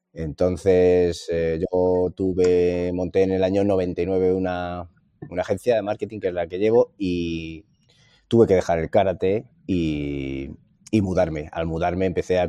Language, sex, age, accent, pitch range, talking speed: Spanish, male, 30-49, Spanish, 85-95 Hz, 155 wpm